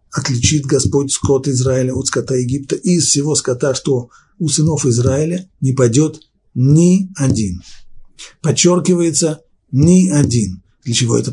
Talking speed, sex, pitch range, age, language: 125 wpm, male, 120-155 Hz, 50-69, Russian